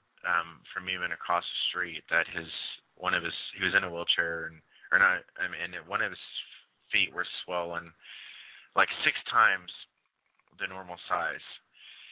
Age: 20-39